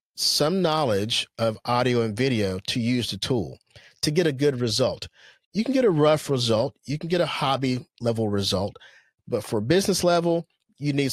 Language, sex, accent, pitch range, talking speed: English, male, American, 115-150 Hz, 185 wpm